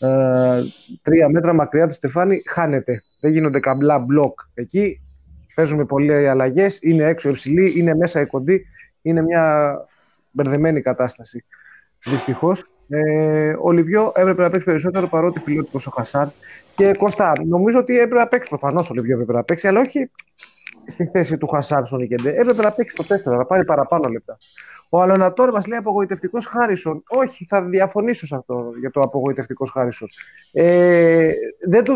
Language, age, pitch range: Greek, 30-49, 140-200 Hz